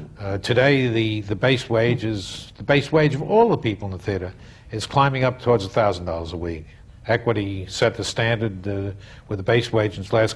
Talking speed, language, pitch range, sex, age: 220 wpm, English, 105-130 Hz, male, 60-79